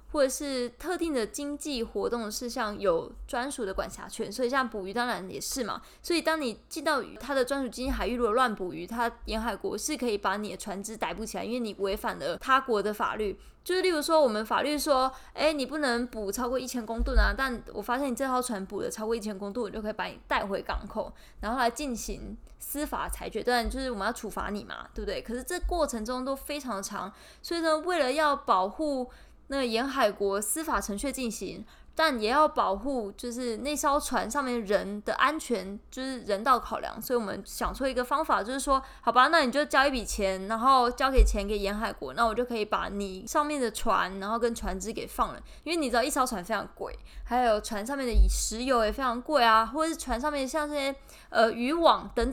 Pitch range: 220-275 Hz